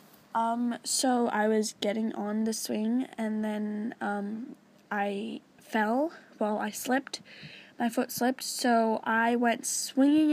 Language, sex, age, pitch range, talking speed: English, female, 10-29, 215-245 Hz, 140 wpm